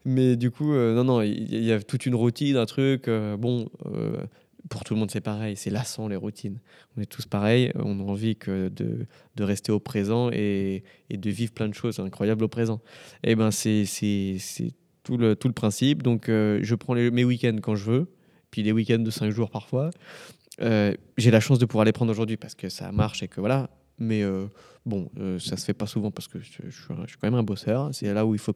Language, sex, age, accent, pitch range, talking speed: French, male, 20-39, French, 105-125 Hz, 245 wpm